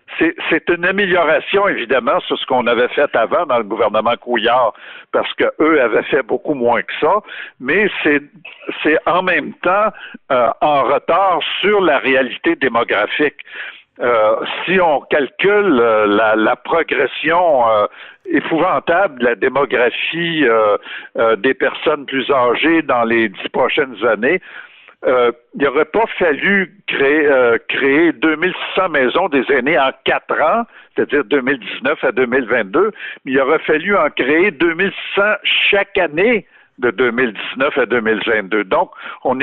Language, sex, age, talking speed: French, male, 60-79, 145 wpm